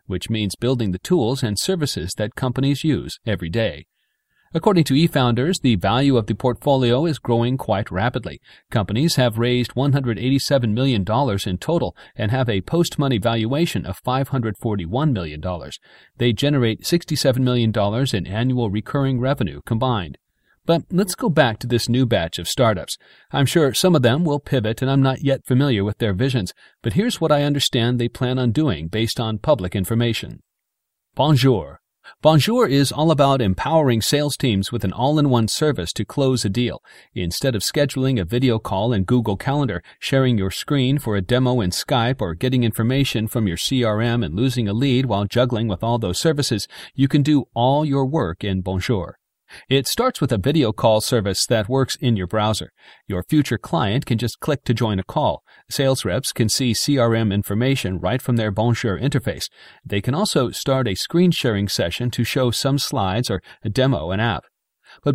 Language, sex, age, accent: English, male, 40-59, American